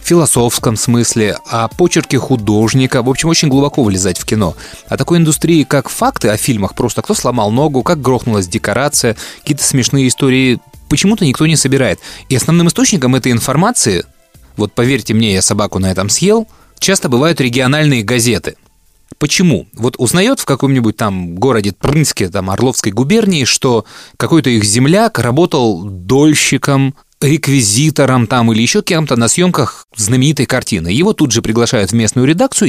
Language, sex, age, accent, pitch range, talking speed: Russian, male, 20-39, native, 115-160 Hz, 150 wpm